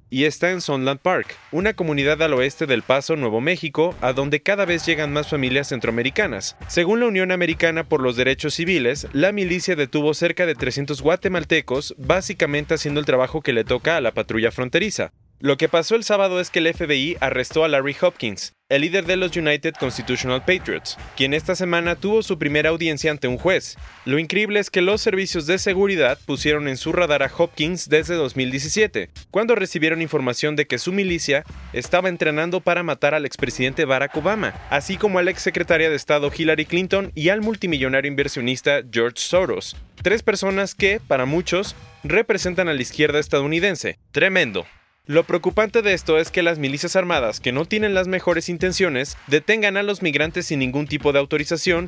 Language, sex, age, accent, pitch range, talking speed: English, male, 30-49, Mexican, 140-185 Hz, 185 wpm